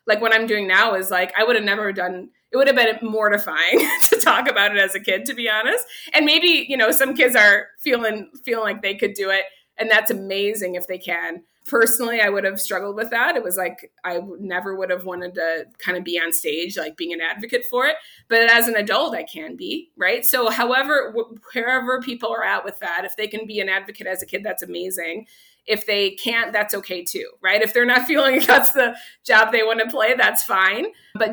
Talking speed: 235 wpm